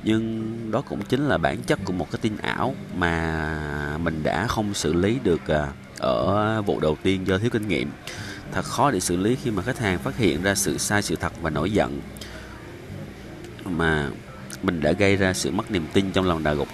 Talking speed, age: 210 wpm, 30-49